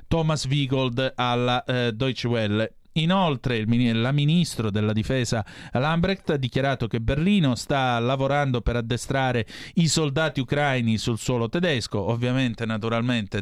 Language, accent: Italian, native